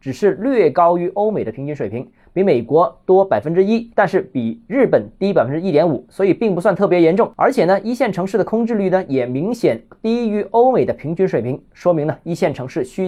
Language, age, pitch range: Chinese, 20-39, 155-210 Hz